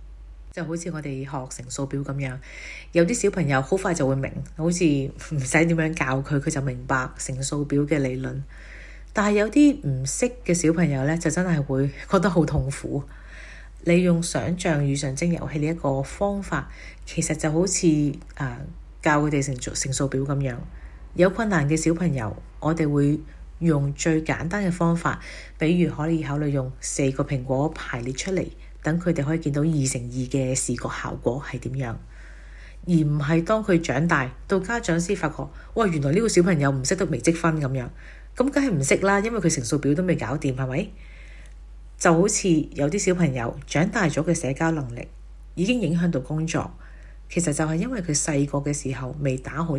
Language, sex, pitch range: Chinese, female, 135-170 Hz